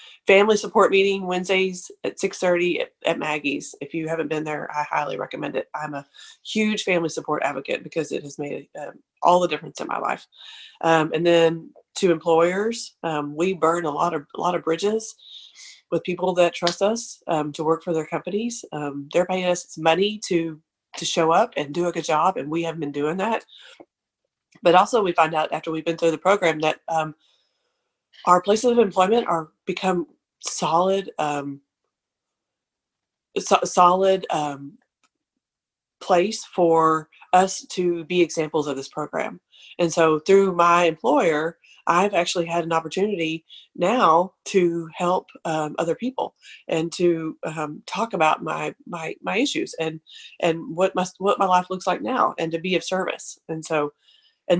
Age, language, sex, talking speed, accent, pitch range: 30-49, English, female, 175 wpm, American, 160-185 Hz